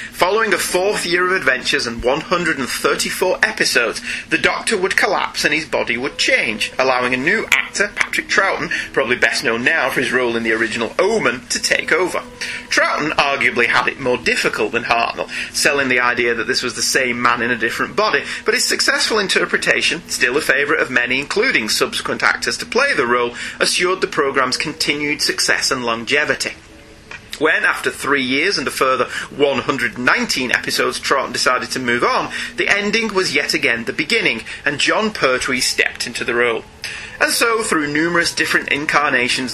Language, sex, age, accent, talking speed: English, male, 30-49, British, 180 wpm